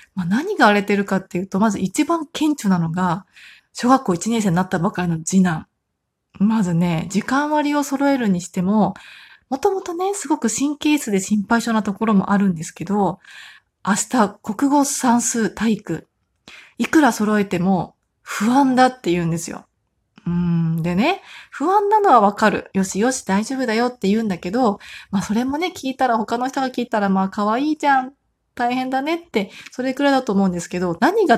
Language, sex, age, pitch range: Japanese, female, 20-39, 185-245 Hz